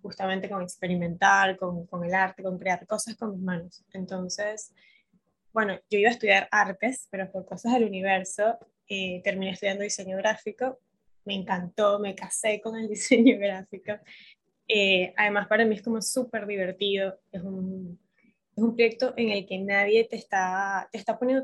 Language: Spanish